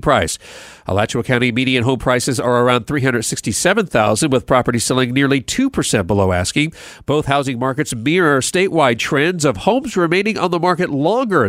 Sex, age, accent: male, 40-59, American